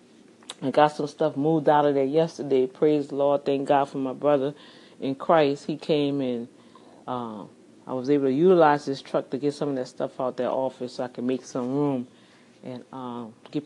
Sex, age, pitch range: female, 30-49, 135-180 Hz